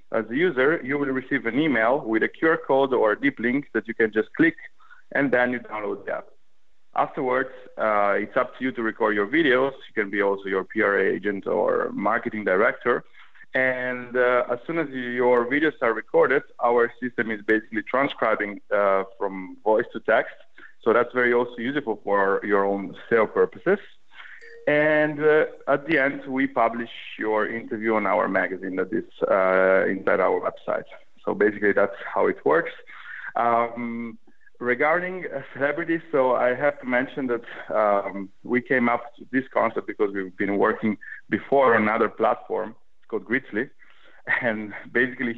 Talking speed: 170 wpm